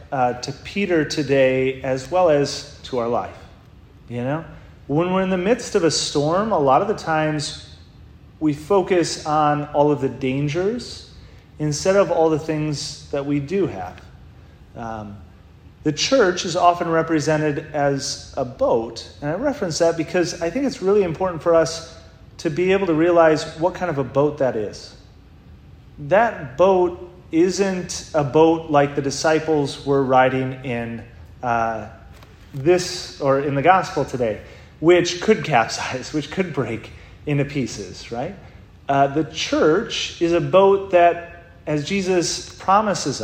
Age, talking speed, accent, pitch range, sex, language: 30-49, 155 wpm, American, 130-175 Hz, male, English